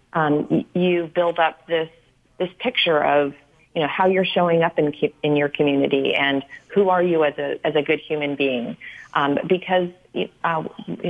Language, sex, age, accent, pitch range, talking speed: English, female, 40-59, American, 145-170 Hz, 180 wpm